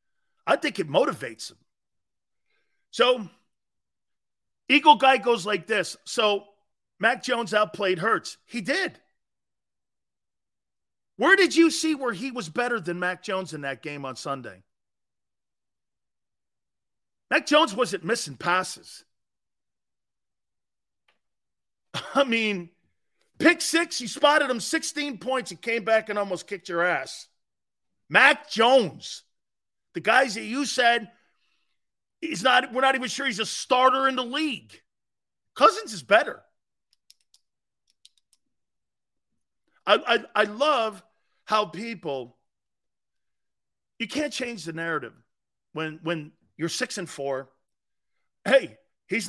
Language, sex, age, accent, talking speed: English, male, 40-59, American, 120 wpm